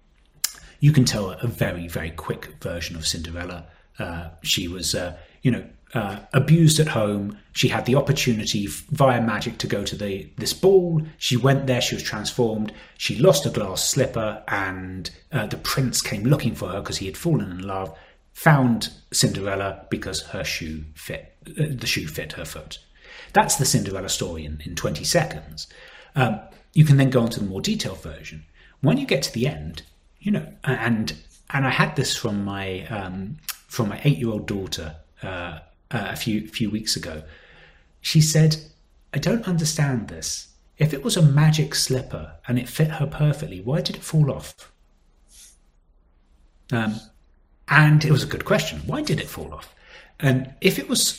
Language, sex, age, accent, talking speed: English, male, 30-49, British, 180 wpm